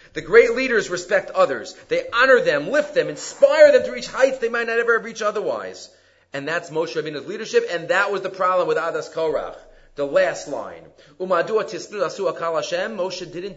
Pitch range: 150-235 Hz